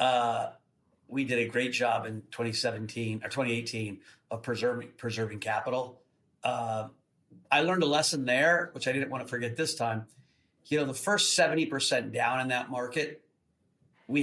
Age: 40-59